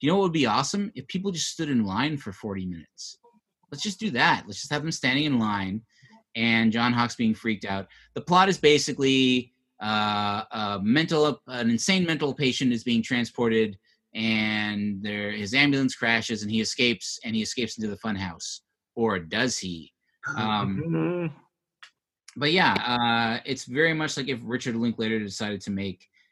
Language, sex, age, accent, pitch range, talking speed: English, male, 30-49, American, 105-140 Hz, 180 wpm